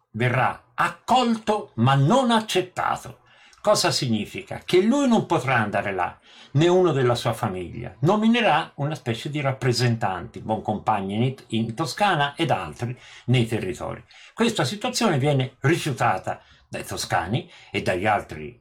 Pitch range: 110-150 Hz